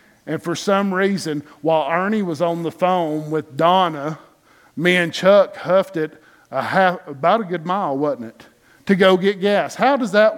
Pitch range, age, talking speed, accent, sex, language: 155-210 Hz, 50-69, 175 wpm, American, male, English